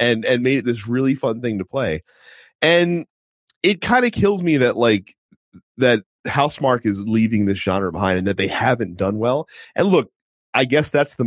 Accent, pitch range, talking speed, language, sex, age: American, 95-130 Hz, 195 wpm, English, male, 30-49